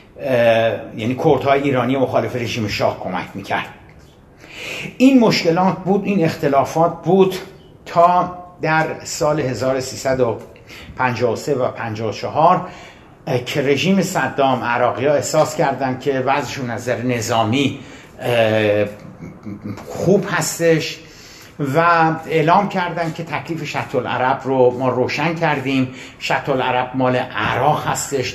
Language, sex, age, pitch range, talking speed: Persian, male, 60-79, 125-160 Hz, 110 wpm